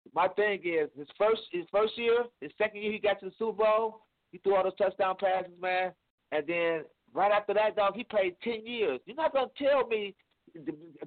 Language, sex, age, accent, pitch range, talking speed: English, male, 30-49, American, 170-220 Hz, 220 wpm